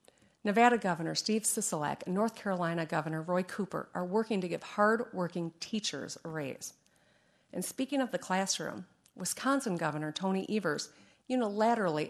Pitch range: 170-220 Hz